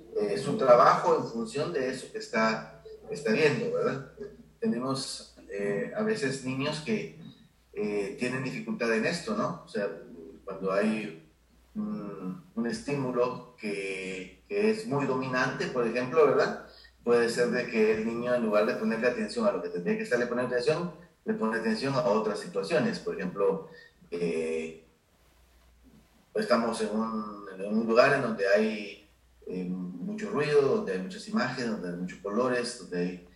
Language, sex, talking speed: Spanish, male, 160 wpm